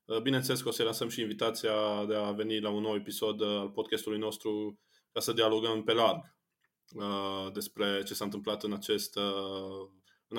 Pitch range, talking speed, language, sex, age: 105-130 Hz, 165 wpm, Romanian, male, 20-39